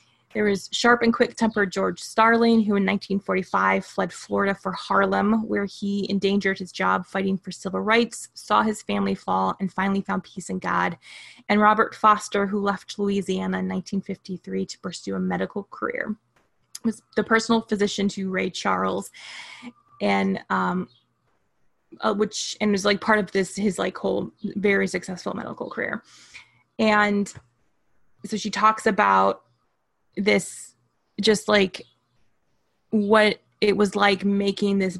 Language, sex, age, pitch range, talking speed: English, female, 20-39, 185-210 Hz, 145 wpm